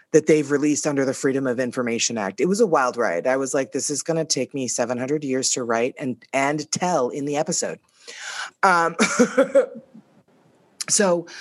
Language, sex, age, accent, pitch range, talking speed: English, female, 30-49, American, 135-180 Hz, 185 wpm